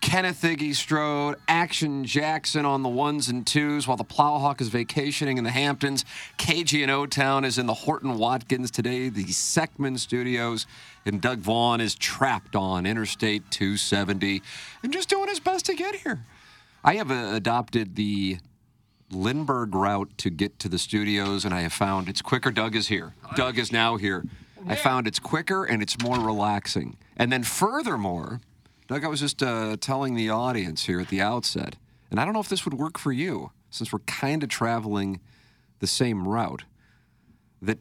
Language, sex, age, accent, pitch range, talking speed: English, male, 40-59, American, 100-140 Hz, 180 wpm